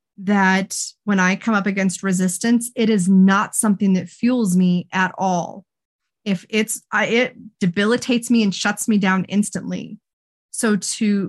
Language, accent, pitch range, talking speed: English, American, 190-230 Hz, 150 wpm